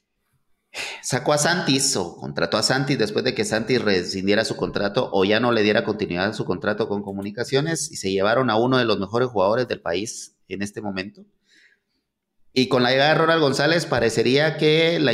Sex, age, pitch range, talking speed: male, 30-49, 105-145 Hz, 195 wpm